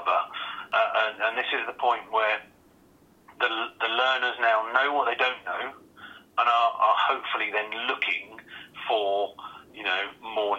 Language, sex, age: English, male, 40-59